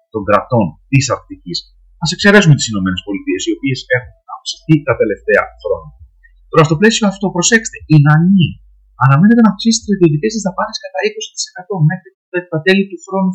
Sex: male